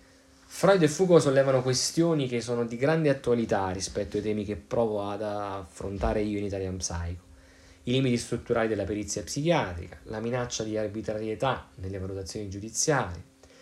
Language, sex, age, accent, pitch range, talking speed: Italian, male, 20-39, native, 100-130 Hz, 150 wpm